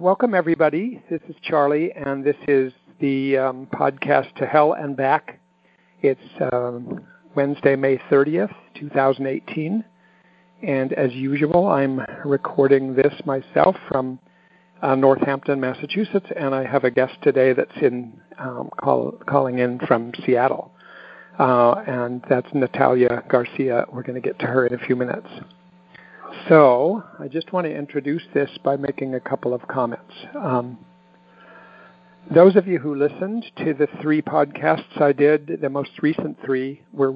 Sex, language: male, English